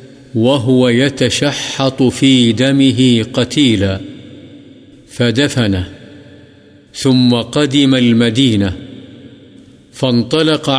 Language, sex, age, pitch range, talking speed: Urdu, male, 50-69, 115-135 Hz, 55 wpm